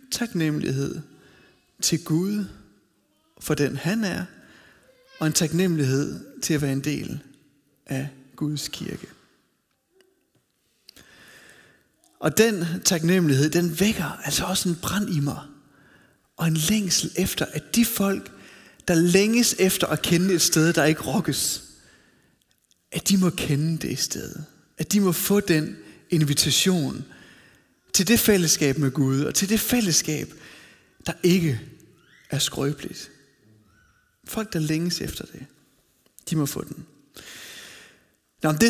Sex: male